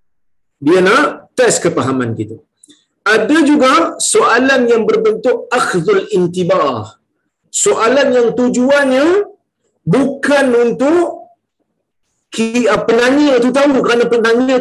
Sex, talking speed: male, 100 wpm